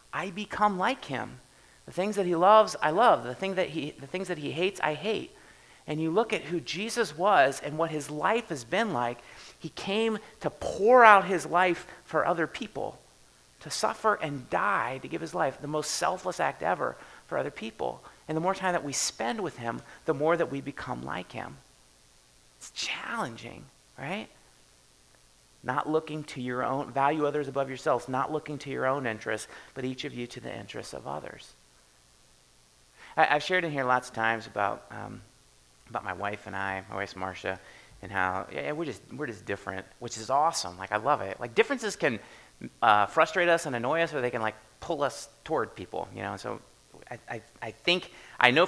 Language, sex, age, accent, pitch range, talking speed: English, male, 30-49, American, 110-175 Hz, 205 wpm